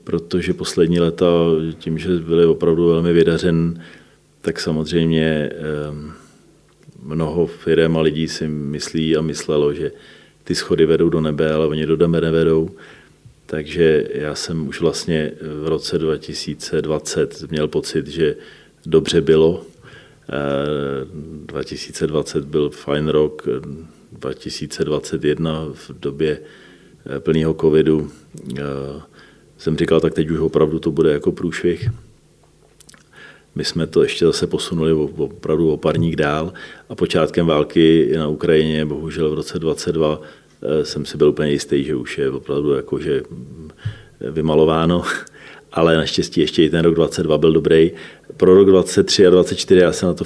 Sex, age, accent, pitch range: male, 40-59, native, 75-85 Hz